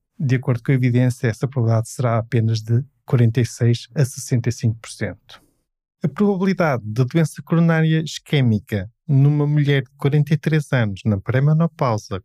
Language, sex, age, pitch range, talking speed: Portuguese, male, 20-39, 125-160 Hz, 125 wpm